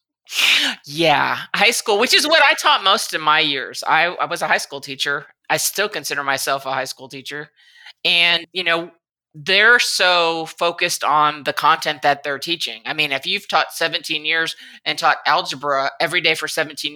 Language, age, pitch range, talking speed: English, 30-49, 145-175 Hz, 190 wpm